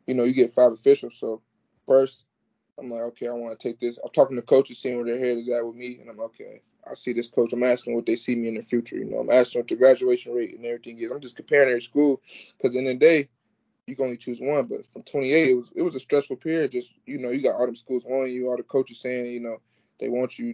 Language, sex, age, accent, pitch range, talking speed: English, male, 20-39, American, 120-140 Hz, 295 wpm